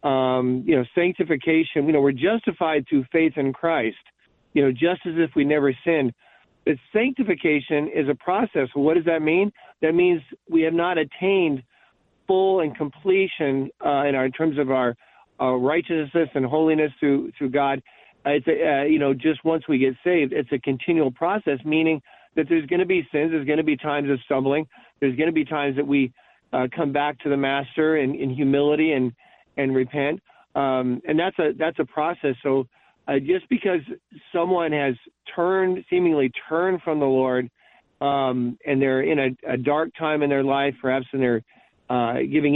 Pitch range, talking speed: 135-160 Hz, 190 wpm